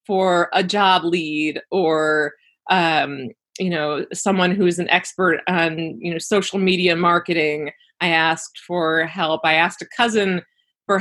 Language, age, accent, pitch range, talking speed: English, 20-39, American, 170-210 Hz, 155 wpm